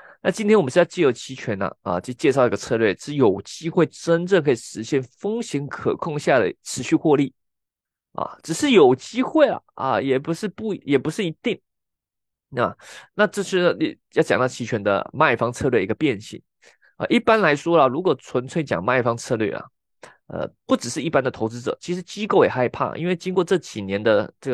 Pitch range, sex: 130-195 Hz, male